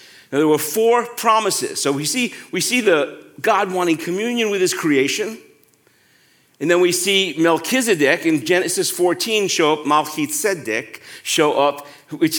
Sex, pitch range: male, 155-215 Hz